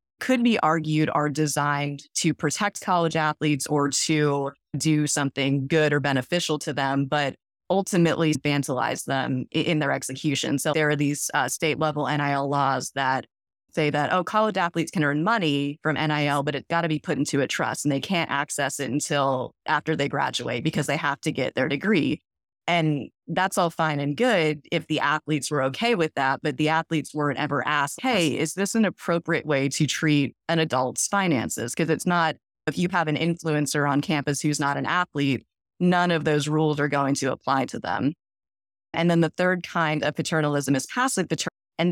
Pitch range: 140-160 Hz